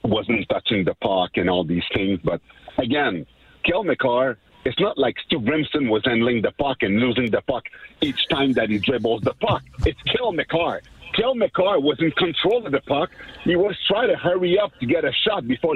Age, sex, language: 50-69, male, English